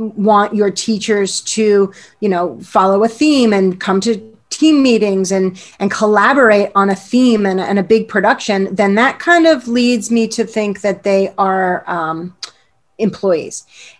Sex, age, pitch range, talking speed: female, 30-49, 195-225 Hz, 165 wpm